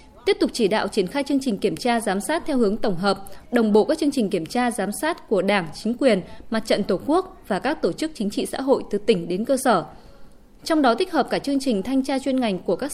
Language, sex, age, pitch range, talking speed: Vietnamese, female, 20-39, 205-275 Hz, 275 wpm